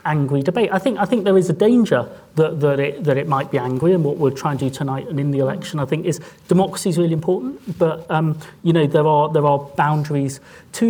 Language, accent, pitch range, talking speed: English, British, 150-195 Hz, 255 wpm